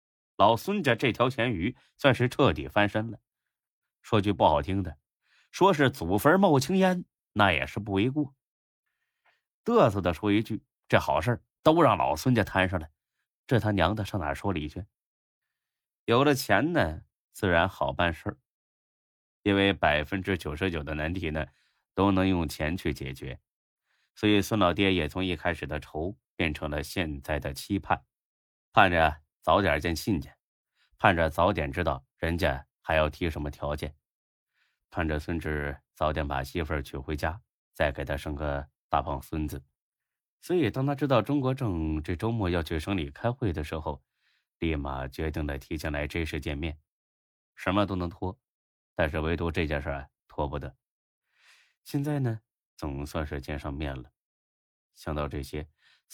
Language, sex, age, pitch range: Chinese, male, 30-49, 75-105 Hz